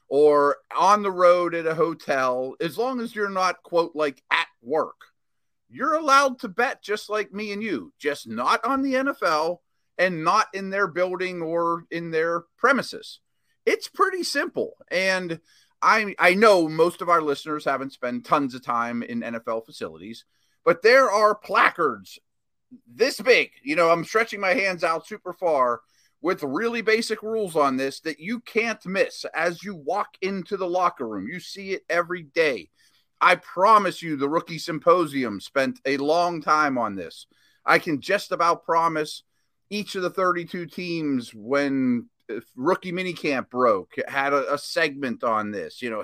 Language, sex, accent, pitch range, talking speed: English, male, American, 155-220 Hz, 170 wpm